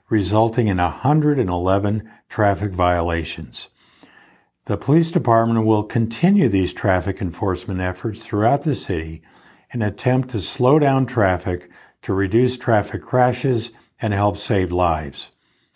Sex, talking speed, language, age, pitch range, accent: male, 120 wpm, English, 50-69, 95-120 Hz, American